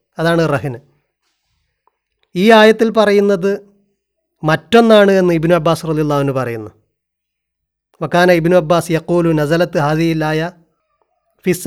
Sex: male